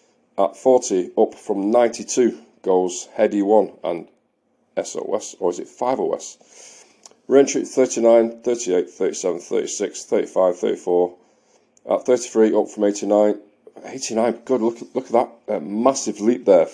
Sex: male